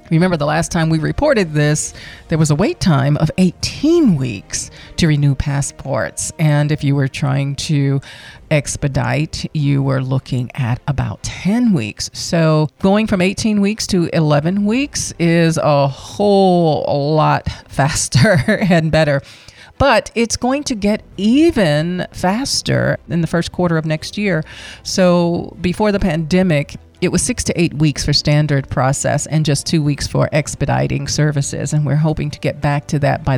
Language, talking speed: English, 160 wpm